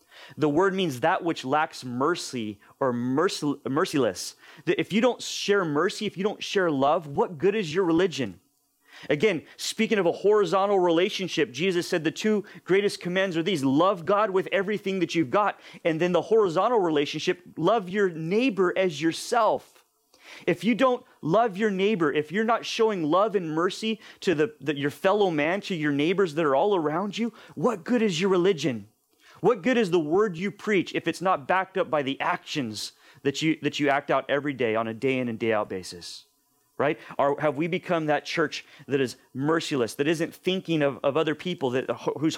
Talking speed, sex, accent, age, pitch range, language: 195 wpm, male, American, 30-49, 145-195 Hz, English